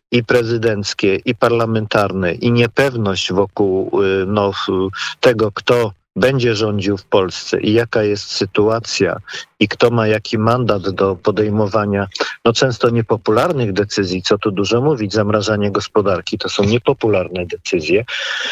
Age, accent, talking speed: 50-69, native, 125 wpm